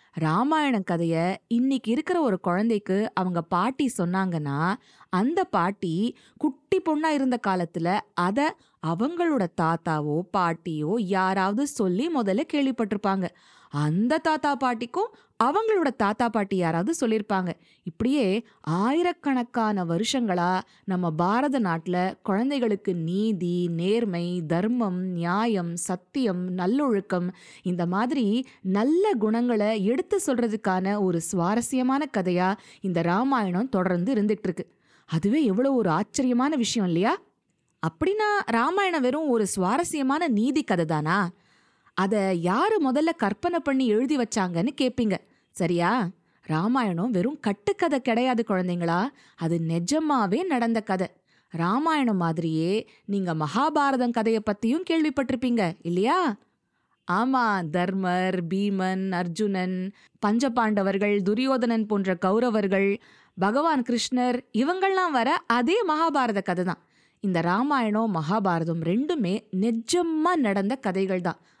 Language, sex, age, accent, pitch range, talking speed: Tamil, female, 20-39, native, 180-260 Hz, 100 wpm